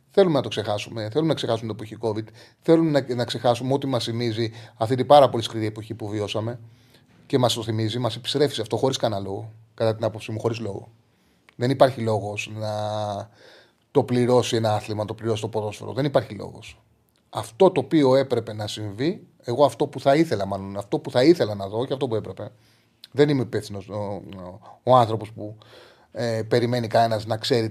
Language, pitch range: Greek, 110-145 Hz